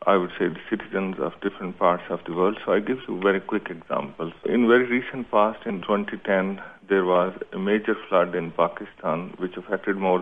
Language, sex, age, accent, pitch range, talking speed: English, male, 50-69, Indian, 90-105 Hz, 200 wpm